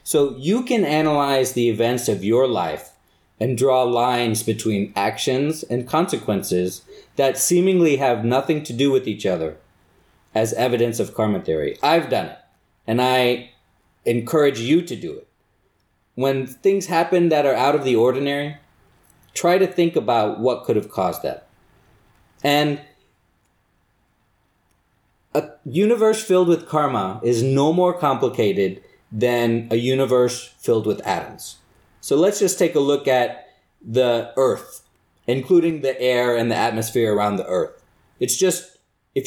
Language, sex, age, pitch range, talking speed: English, male, 30-49, 115-155 Hz, 145 wpm